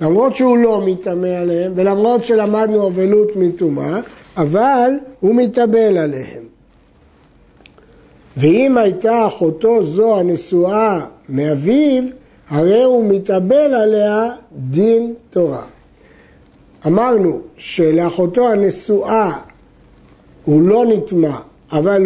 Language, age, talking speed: Hebrew, 60-79, 85 wpm